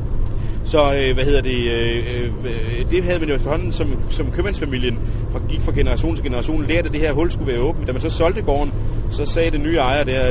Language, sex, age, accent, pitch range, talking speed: English, male, 30-49, Danish, 110-130 Hz, 225 wpm